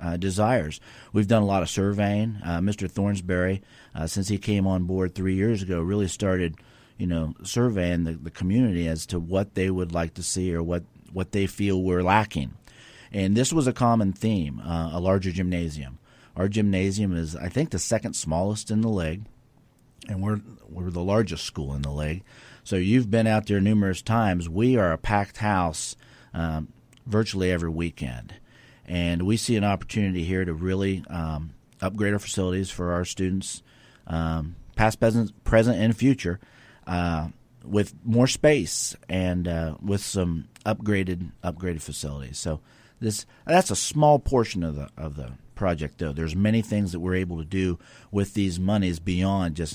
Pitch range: 85-105 Hz